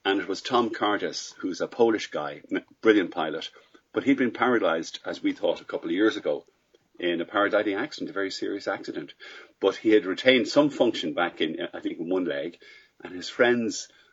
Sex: male